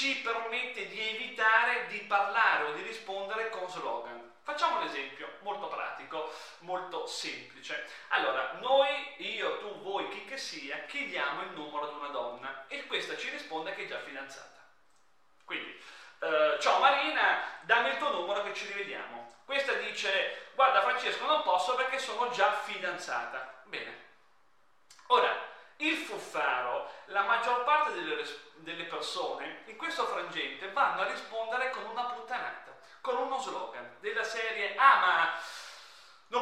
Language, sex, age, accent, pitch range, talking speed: Italian, male, 30-49, native, 185-265 Hz, 145 wpm